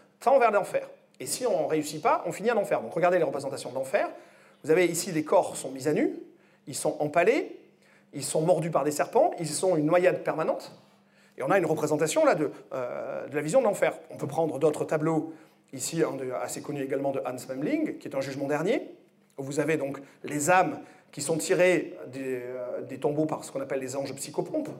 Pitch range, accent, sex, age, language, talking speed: 150-245 Hz, French, male, 30-49, French, 225 wpm